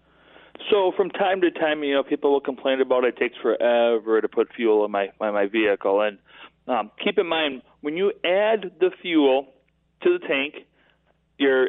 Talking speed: 190 wpm